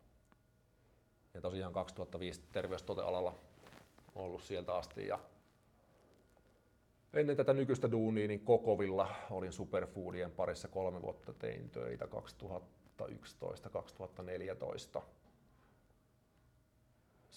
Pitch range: 90-105 Hz